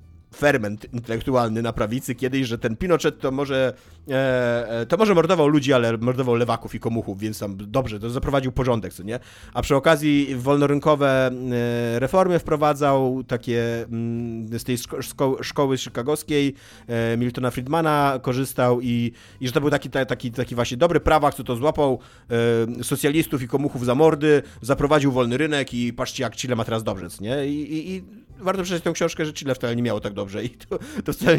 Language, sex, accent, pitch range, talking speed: Polish, male, native, 115-145 Hz, 170 wpm